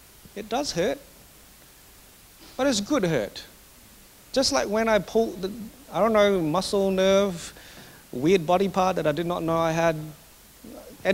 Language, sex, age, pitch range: English, male, 30-49, 130-200 Hz